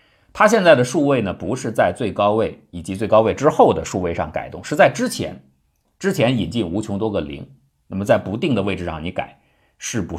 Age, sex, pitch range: 50-69, male, 85-130 Hz